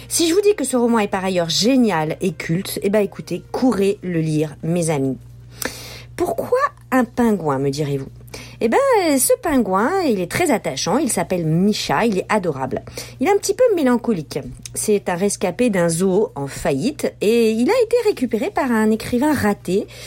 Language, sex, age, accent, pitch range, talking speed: French, female, 40-59, French, 180-265 Hz, 185 wpm